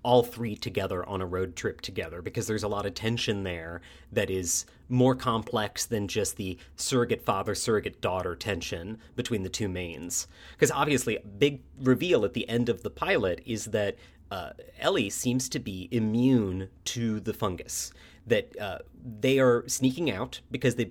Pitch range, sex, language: 95-125 Hz, male, English